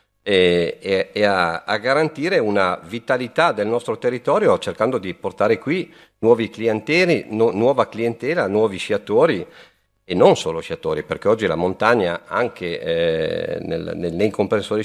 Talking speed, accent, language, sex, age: 140 wpm, native, Italian, male, 50-69